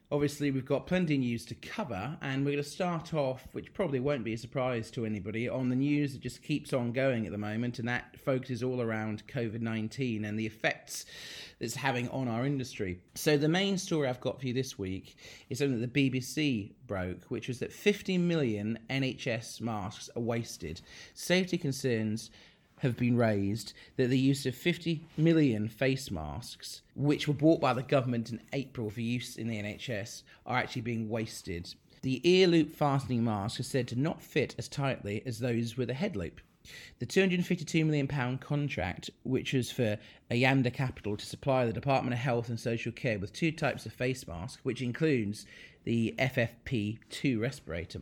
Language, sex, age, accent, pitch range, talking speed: English, male, 30-49, British, 110-140 Hz, 185 wpm